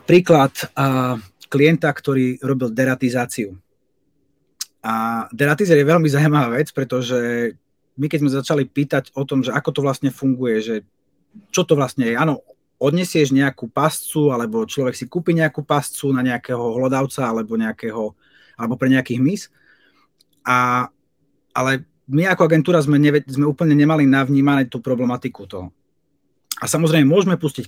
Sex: male